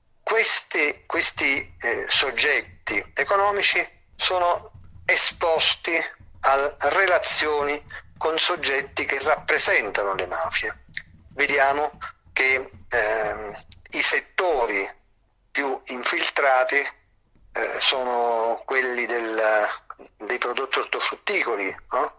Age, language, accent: 40-59, Italian, native